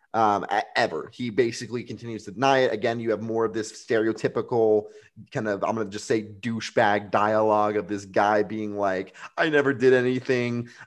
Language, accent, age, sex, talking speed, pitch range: English, American, 20-39, male, 180 wpm, 110-125 Hz